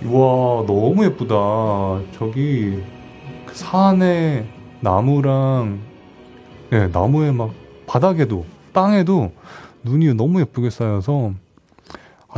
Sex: male